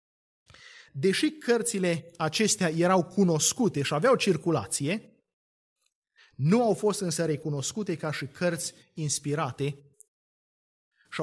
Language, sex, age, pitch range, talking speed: Romanian, male, 30-49, 155-210 Hz, 95 wpm